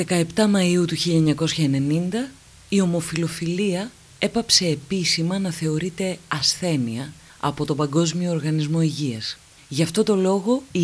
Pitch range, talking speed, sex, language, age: 145-180 Hz, 115 wpm, female, Greek, 30-49